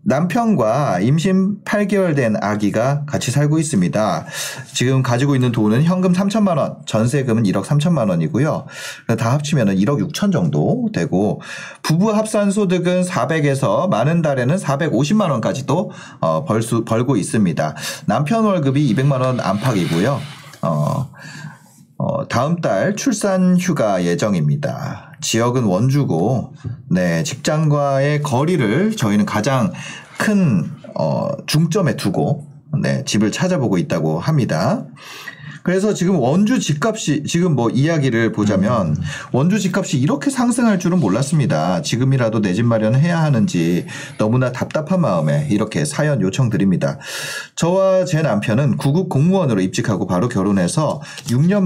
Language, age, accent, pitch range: Korean, 30-49, native, 125-180 Hz